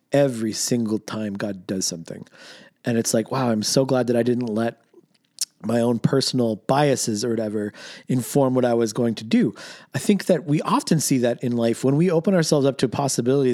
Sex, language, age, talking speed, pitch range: male, English, 40-59, 210 wpm, 115-155 Hz